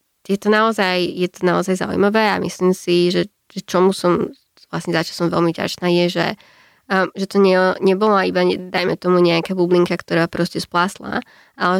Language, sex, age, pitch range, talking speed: Slovak, female, 20-39, 175-195 Hz, 180 wpm